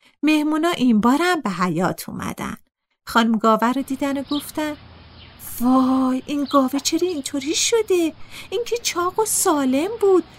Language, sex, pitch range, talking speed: Persian, female, 220-320 Hz, 140 wpm